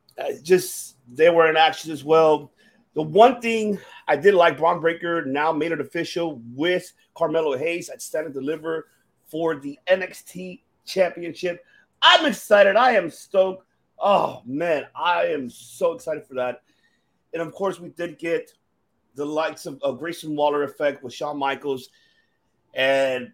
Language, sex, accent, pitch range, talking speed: English, male, American, 140-195 Hz, 155 wpm